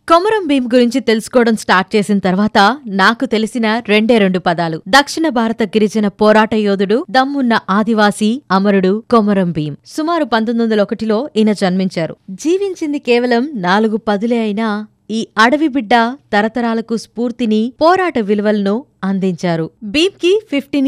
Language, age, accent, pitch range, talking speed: Telugu, 20-39, native, 205-265 Hz, 120 wpm